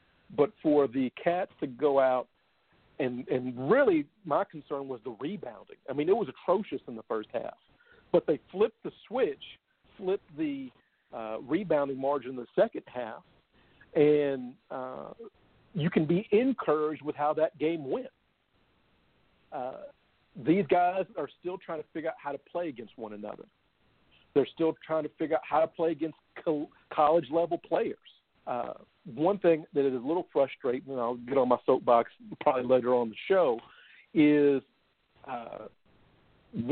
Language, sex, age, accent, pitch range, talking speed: English, male, 50-69, American, 135-180 Hz, 160 wpm